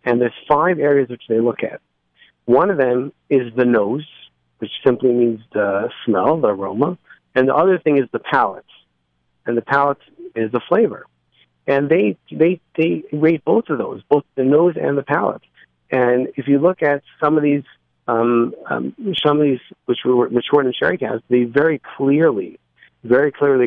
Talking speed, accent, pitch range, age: 185 wpm, American, 115-140 Hz, 50-69